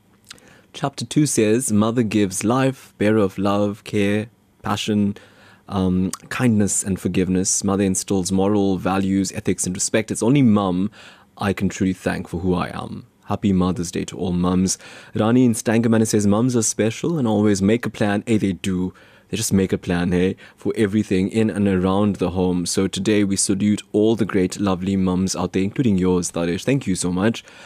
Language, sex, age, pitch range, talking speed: English, male, 20-39, 95-115 Hz, 185 wpm